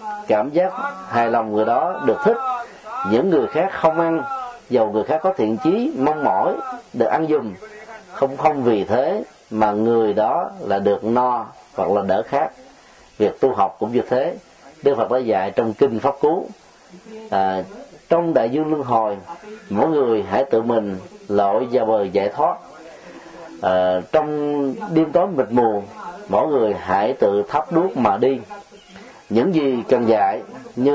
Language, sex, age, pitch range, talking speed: Vietnamese, male, 30-49, 120-185 Hz, 170 wpm